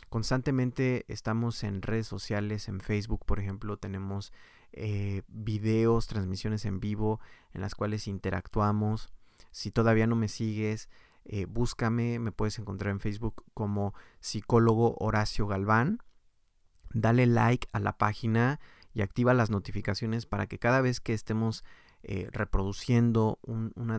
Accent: Mexican